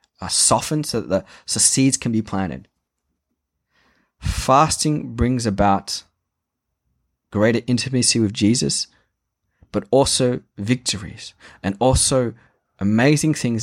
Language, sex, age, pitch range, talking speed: English, male, 20-39, 95-120 Hz, 105 wpm